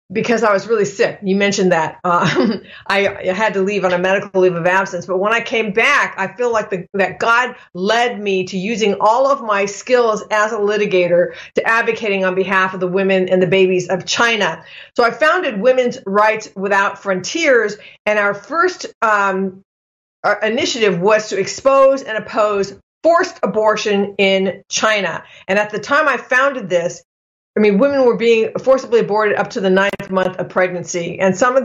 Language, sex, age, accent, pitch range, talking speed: English, female, 40-59, American, 185-230 Hz, 185 wpm